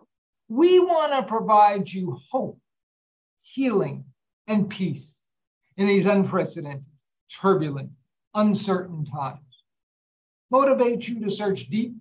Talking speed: 100 wpm